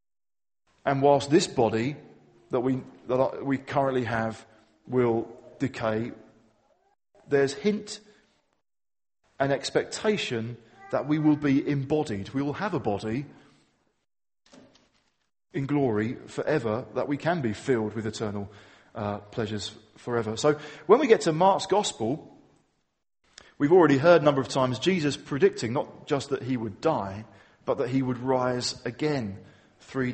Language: English